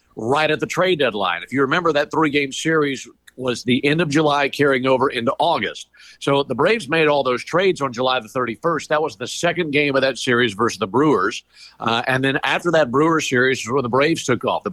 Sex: male